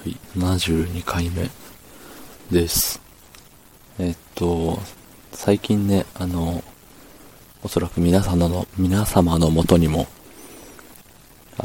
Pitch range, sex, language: 85-100 Hz, male, Japanese